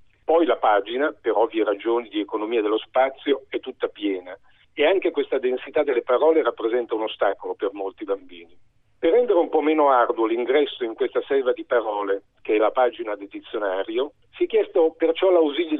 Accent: native